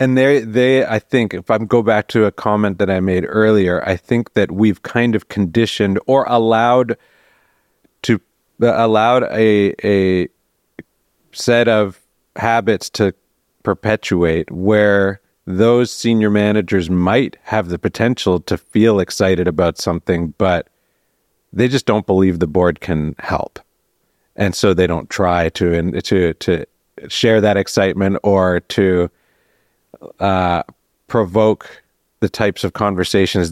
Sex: male